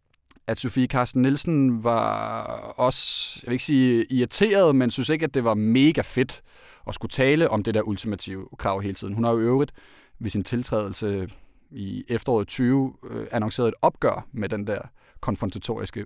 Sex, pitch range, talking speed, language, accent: male, 110-135 Hz, 175 wpm, Danish, native